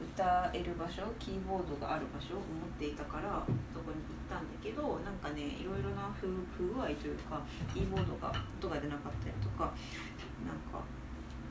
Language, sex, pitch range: Japanese, female, 145-235 Hz